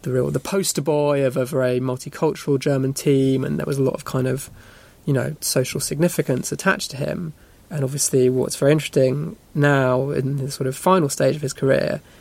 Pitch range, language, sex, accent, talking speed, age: 130-145 Hz, English, male, British, 200 wpm, 20-39